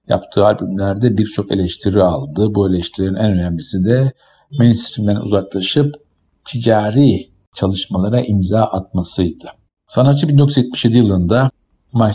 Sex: male